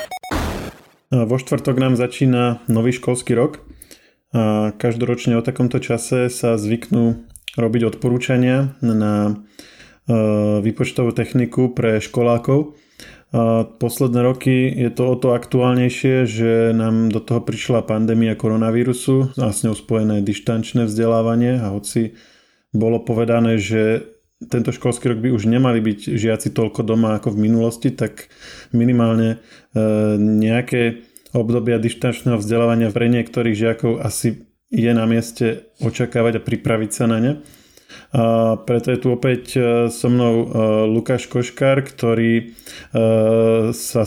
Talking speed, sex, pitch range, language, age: 120 wpm, male, 115-125 Hz, Slovak, 20-39